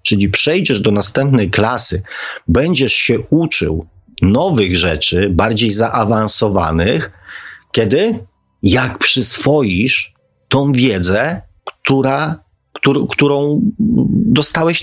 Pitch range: 95-135 Hz